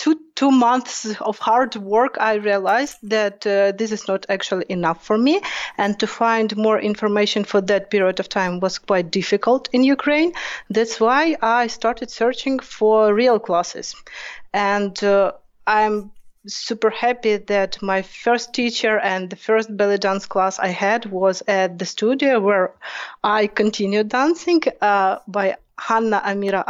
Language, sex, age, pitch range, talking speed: English, female, 30-49, 195-230 Hz, 155 wpm